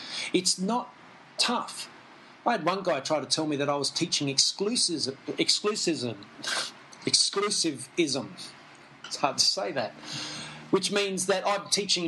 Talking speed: 135 wpm